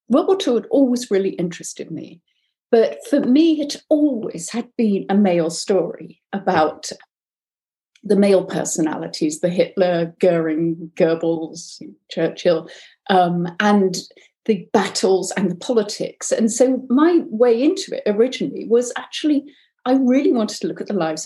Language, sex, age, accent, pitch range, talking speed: English, female, 50-69, British, 190-255 Hz, 145 wpm